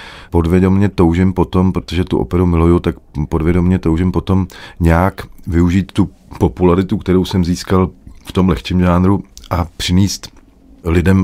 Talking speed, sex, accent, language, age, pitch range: 135 wpm, male, native, Czech, 40-59, 80-95 Hz